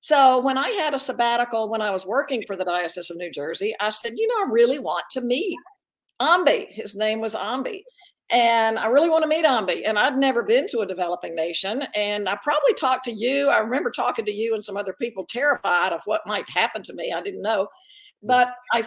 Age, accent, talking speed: 50-69, American, 230 wpm